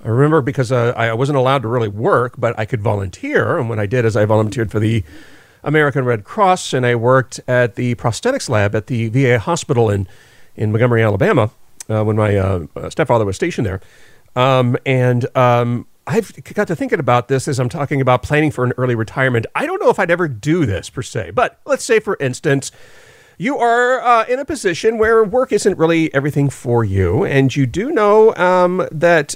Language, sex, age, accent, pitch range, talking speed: English, male, 40-59, American, 120-185 Hz, 205 wpm